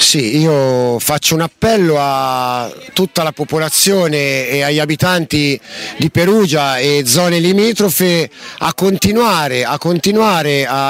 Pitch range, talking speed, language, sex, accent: 145-190 Hz, 120 wpm, Italian, male, native